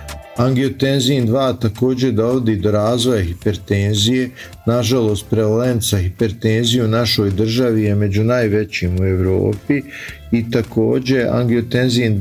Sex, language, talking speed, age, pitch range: male, Croatian, 105 wpm, 50-69, 105-125 Hz